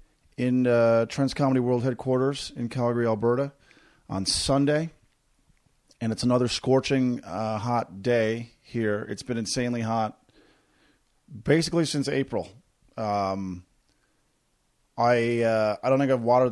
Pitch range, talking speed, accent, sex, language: 105-130 Hz, 125 wpm, American, male, English